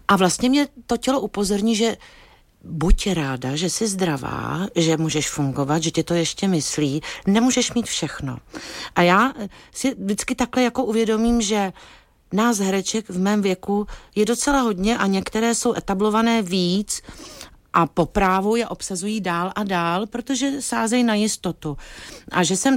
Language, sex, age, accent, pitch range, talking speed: Czech, female, 50-69, native, 185-225 Hz, 155 wpm